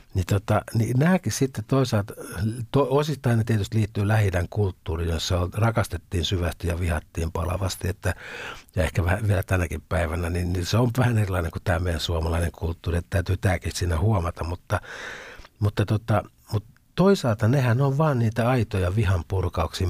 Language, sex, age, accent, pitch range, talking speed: Finnish, male, 60-79, native, 90-115 Hz, 165 wpm